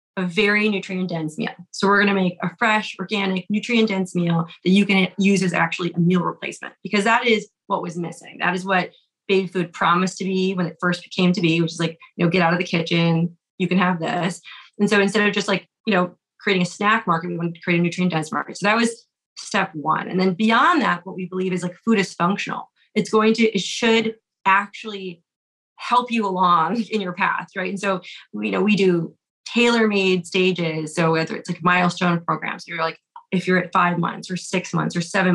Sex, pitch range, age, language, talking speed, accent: female, 175-205 Hz, 30-49, English, 225 wpm, American